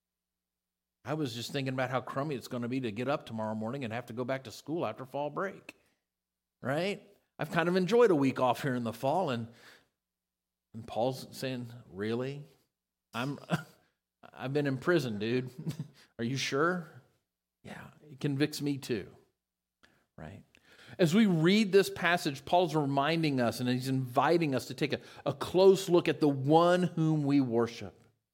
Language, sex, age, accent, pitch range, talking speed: English, male, 50-69, American, 120-175 Hz, 175 wpm